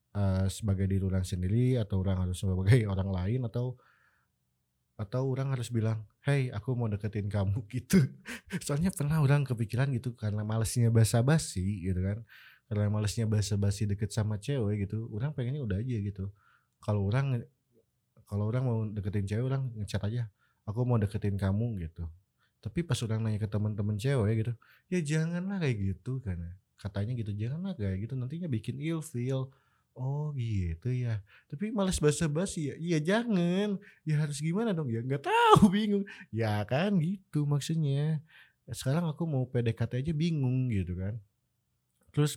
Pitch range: 100-140 Hz